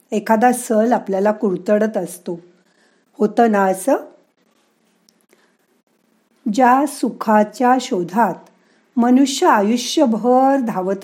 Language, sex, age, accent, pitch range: Marathi, female, 50-69, native, 190-255 Hz